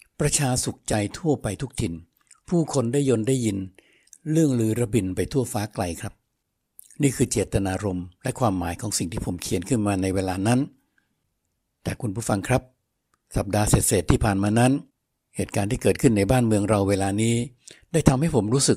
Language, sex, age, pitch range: Thai, male, 60-79, 100-130 Hz